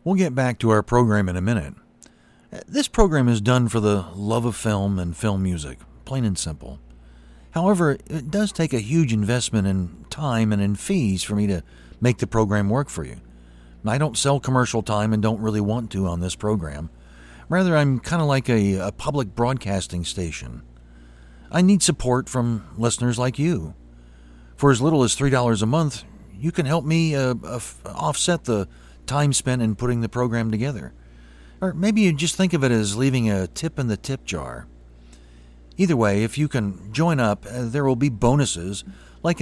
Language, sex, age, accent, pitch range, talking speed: English, male, 40-59, American, 90-135 Hz, 190 wpm